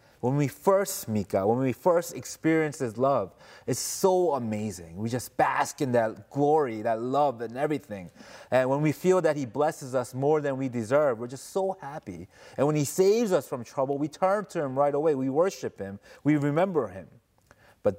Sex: male